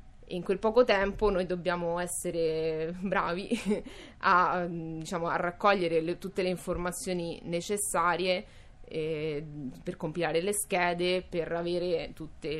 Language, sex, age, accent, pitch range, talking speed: Italian, female, 20-39, native, 160-180 Hz, 110 wpm